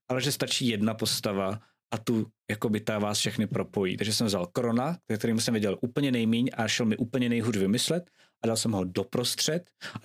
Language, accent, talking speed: Czech, native, 195 wpm